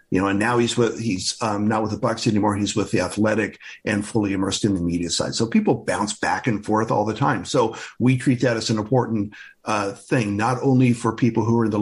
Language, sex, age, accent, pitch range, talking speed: English, male, 50-69, American, 100-120 Hz, 255 wpm